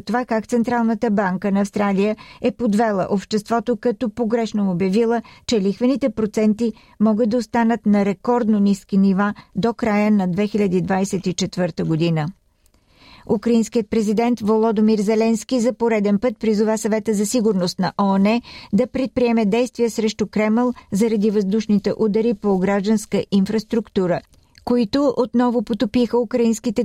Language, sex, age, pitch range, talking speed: Bulgarian, female, 50-69, 205-235 Hz, 125 wpm